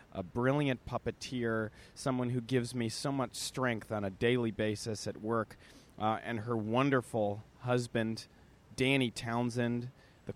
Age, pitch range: 30-49, 105-130 Hz